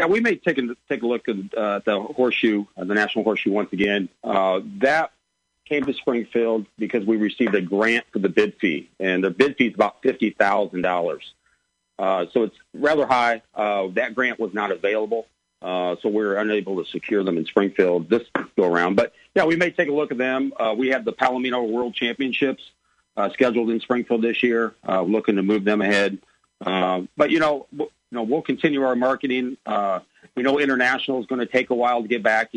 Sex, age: male, 40-59